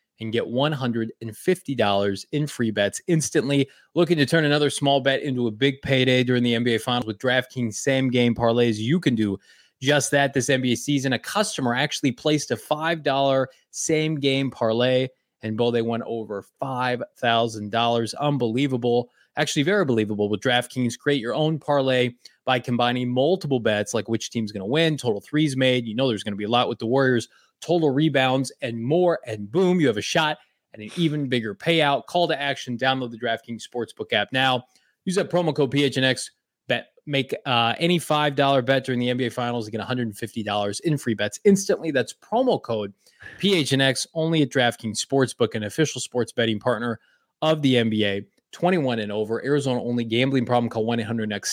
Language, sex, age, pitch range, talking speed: English, male, 20-39, 115-145 Hz, 180 wpm